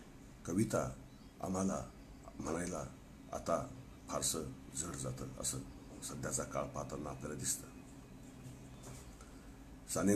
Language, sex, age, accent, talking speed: Marathi, male, 60-79, native, 85 wpm